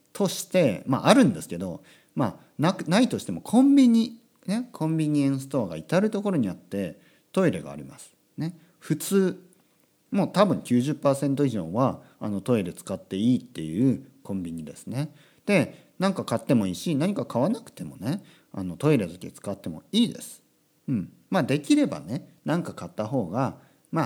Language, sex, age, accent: Japanese, male, 40-59, native